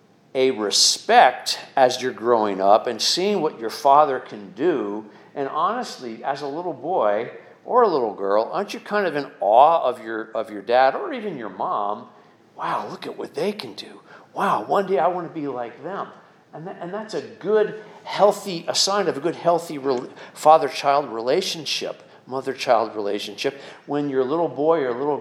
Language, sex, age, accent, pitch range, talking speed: English, male, 50-69, American, 135-195 Hz, 185 wpm